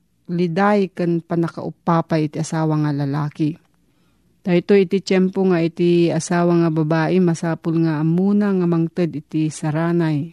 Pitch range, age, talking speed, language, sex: 170-215 Hz, 40-59, 130 wpm, Filipino, female